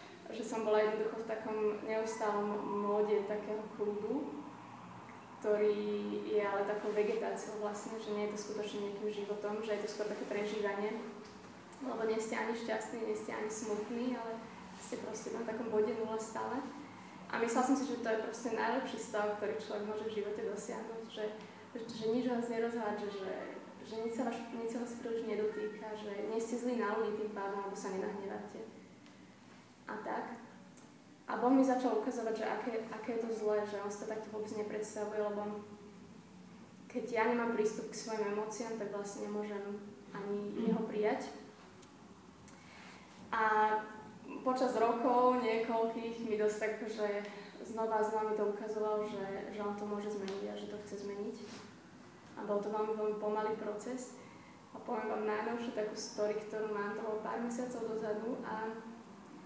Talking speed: 170 wpm